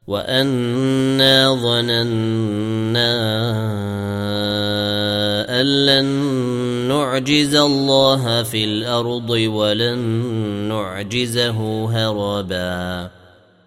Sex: male